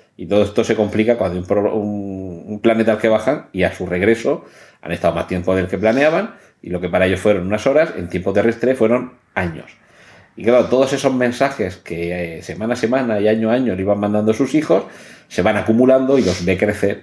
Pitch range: 95-115 Hz